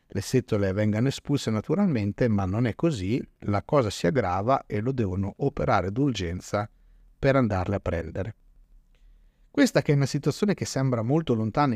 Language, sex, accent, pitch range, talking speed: Italian, male, native, 105-140 Hz, 160 wpm